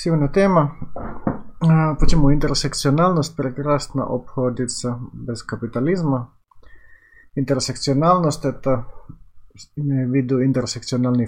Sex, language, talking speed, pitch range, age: male, Finnish, 75 wpm, 115-140 Hz, 30-49